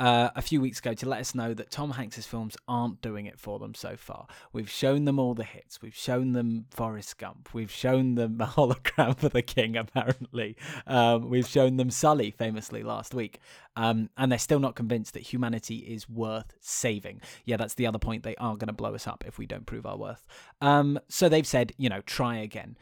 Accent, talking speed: British, 225 wpm